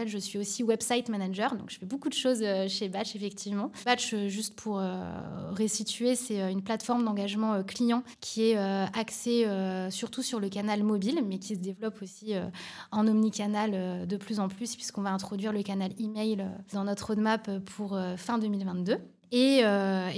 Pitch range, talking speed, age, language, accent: 195-225 Hz, 160 wpm, 20-39, French, French